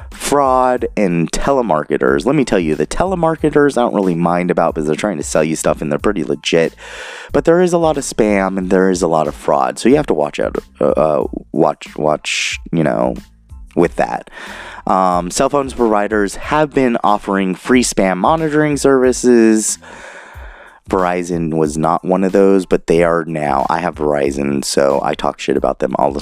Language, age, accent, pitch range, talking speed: English, 30-49, American, 80-120 Hz, 190 wpm